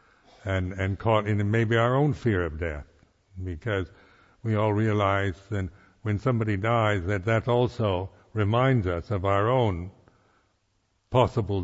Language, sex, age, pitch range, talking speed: English, male, 60-79, 95-110 Hz, 140 wpm